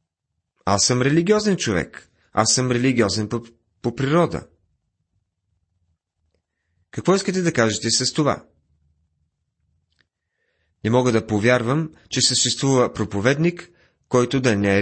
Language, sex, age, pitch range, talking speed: Bulgarian, male, 30-49, 95-135 Hz, 110 wpm